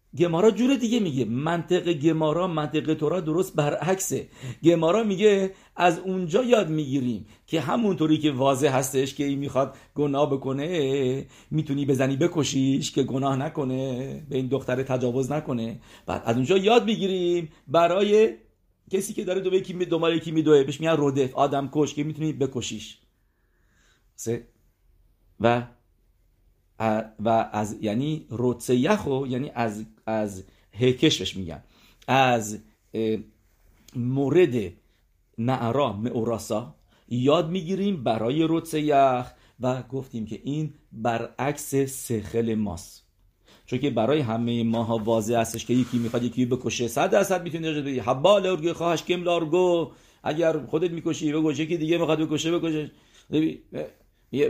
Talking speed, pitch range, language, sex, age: 125 wpm, 115-160 Hz, English, male, 50-69